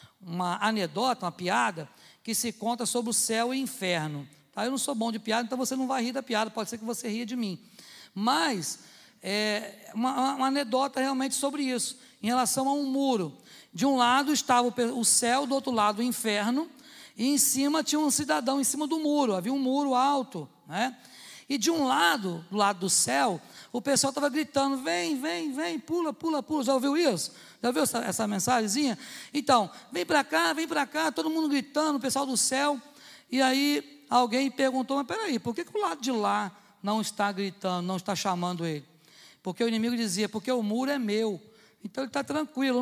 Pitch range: 215-275 Hz